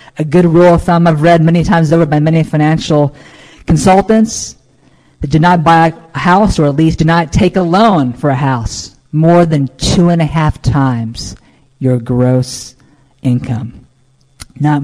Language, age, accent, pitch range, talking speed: English, 40-59, American, 130-170 Hz, 170 wpm